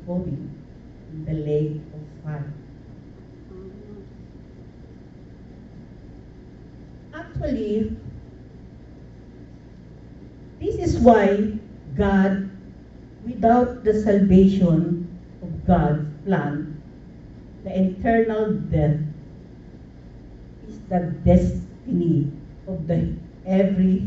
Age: 50-69